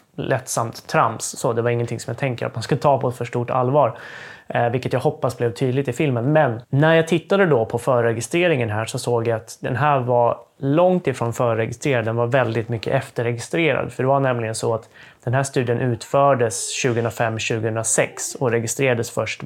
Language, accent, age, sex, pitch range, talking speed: Swedish, native, 20-39, male, 115-140 Hz, 195 wpm